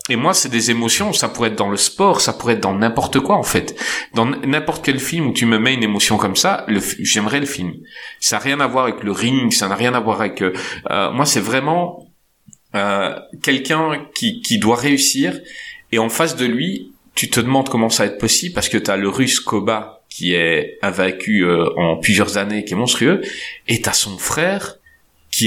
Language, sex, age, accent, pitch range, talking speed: French, male, 30-49, French, 105-145 Hz, 225 wpm